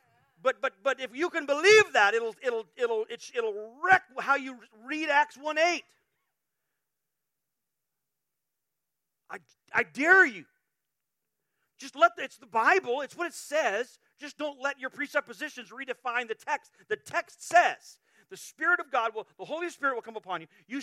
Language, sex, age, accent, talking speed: English, male, 40-59, American, 165 wpm